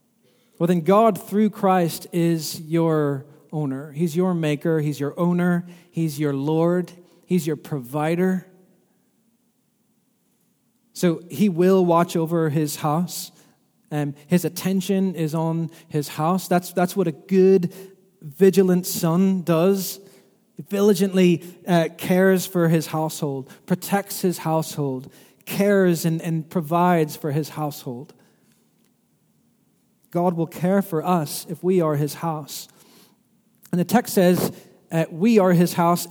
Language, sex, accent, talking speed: English, male, American, 130 wpm